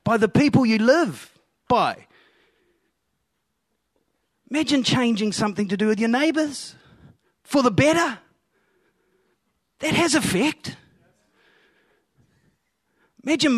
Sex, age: male, 30-49